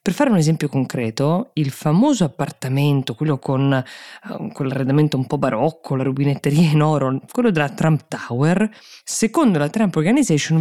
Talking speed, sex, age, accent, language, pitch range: 155 wpm, female, 20-39, native, Italian, 135-185 Hz